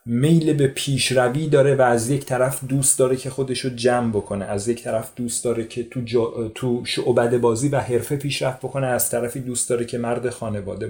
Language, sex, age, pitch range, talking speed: Persian, male, 30-49, 120-150 Hz, 200 wpm